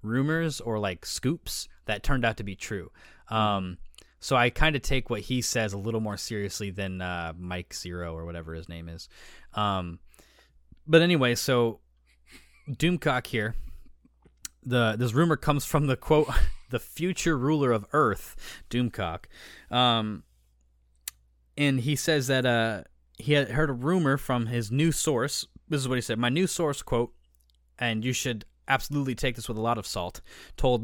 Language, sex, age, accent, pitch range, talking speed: English, male, 20-39, American, 100-135 Hz, 170 wpm